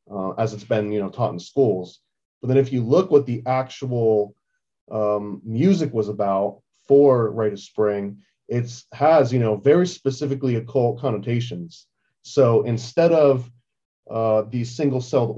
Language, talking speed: English, 150 wpm